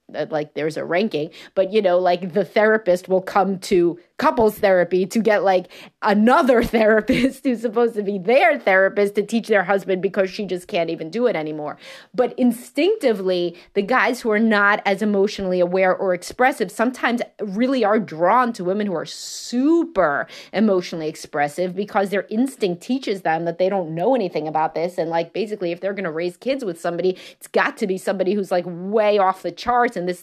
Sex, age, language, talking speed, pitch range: female, 30-49, English, 195 wpm, 180-235 Hz